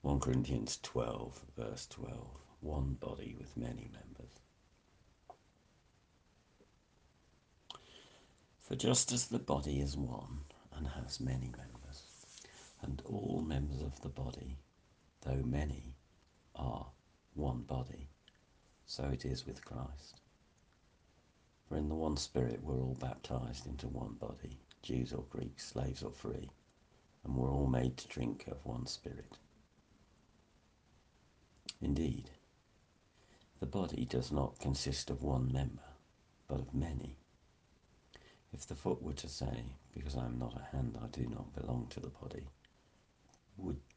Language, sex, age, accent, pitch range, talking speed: English, male, 60-79, British, 65-75 Hz, 130 wpm